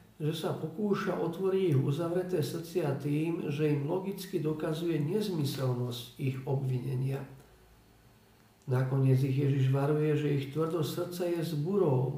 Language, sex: Slovak, male